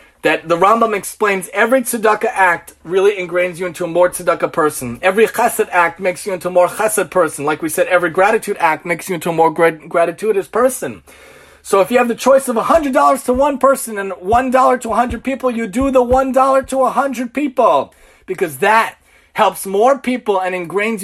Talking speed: 190 wpm